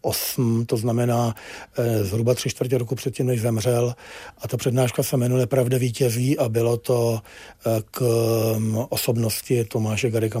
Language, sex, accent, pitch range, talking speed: Czech, male, native, 120-140 Hz, 140 wpm